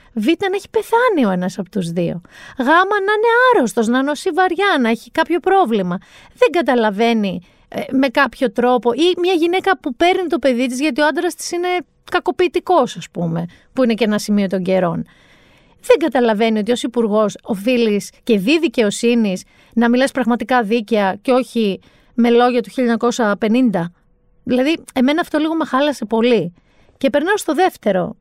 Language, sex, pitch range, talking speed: Greek, female, 205-310 Hz, 170 wpm